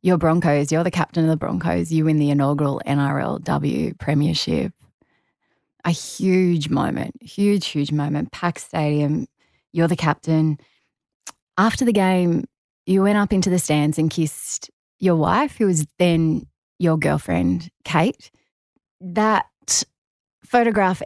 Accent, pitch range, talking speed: Australian, 150-180 Hz, 130 wpm